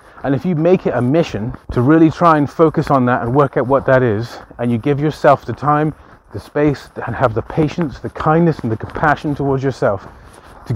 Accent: British